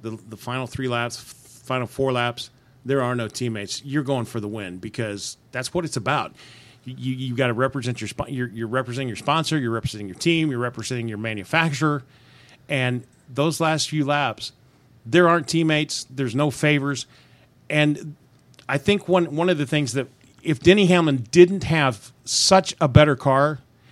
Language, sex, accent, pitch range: English, male, American, 120-135 Hz